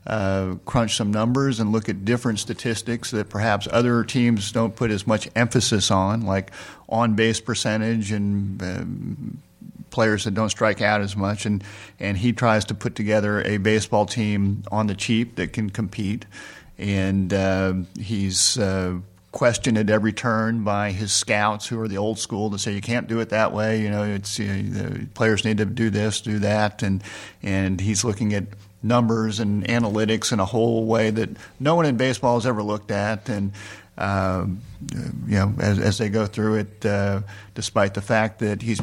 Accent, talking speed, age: American, 185 wpm, 50-69